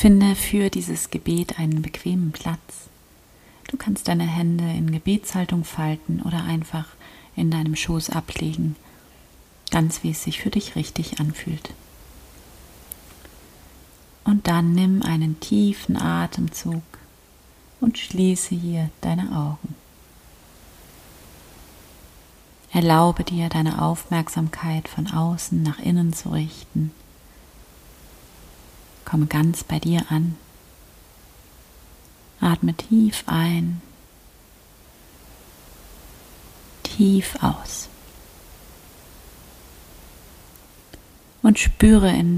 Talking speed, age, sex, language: 90 wpm, 30-49, female, German